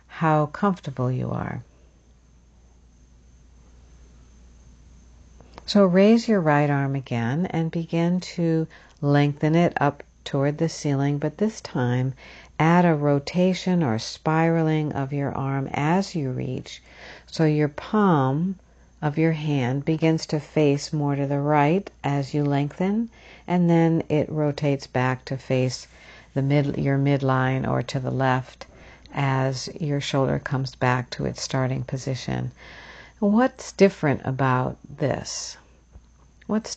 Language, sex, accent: English, female, American